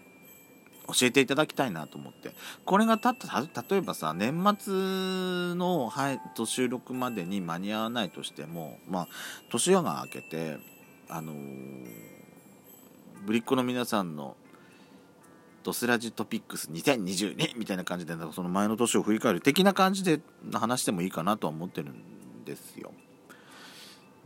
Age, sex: 40-59, male